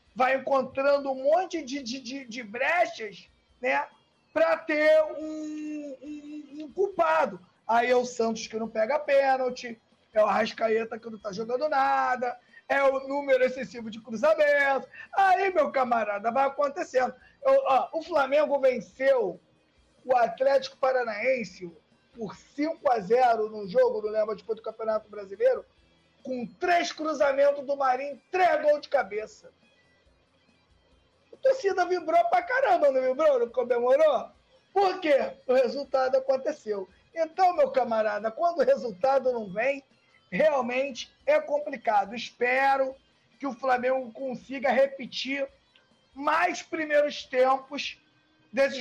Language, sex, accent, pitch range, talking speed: Portuguese, male, Brazilian, 230-300 Hz, 130 wpm